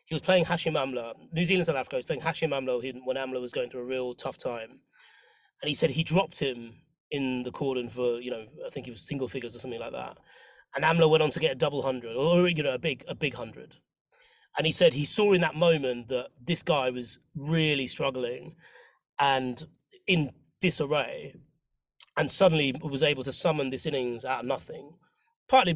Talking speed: 210 wpm